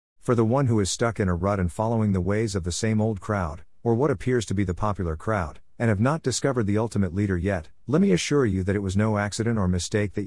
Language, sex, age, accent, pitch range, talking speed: English, male, 50-69, American, 90-115 Hz, 270 wpm